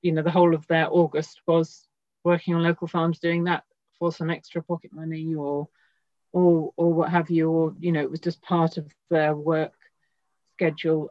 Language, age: English, 40-59